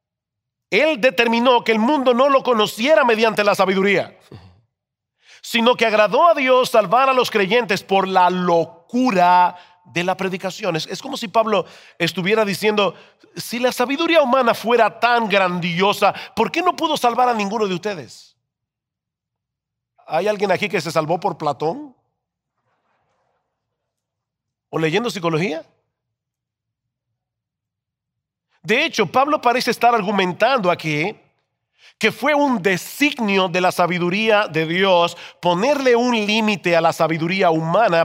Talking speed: 130 wpm